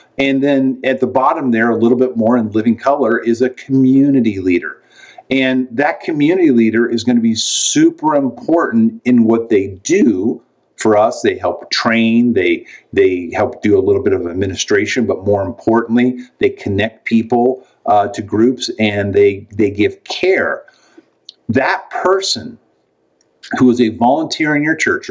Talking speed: 160 wpm